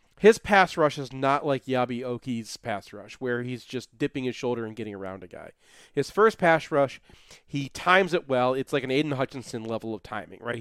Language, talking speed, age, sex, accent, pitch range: English, 215 wpm, 40-59, male, American, 130-160 Hz